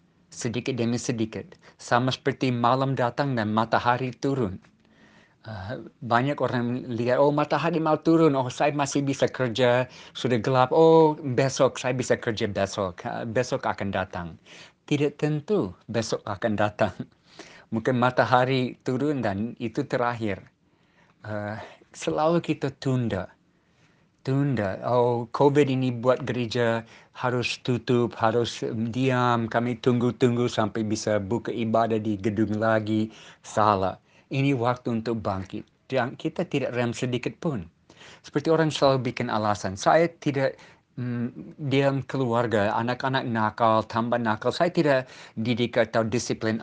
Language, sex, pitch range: Indonesian, male, 110-135 Hz